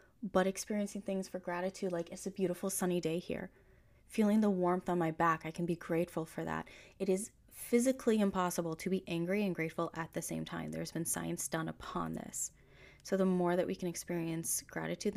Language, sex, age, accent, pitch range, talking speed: English, female, 20-39, American, 170-205 Hz, 200 wpm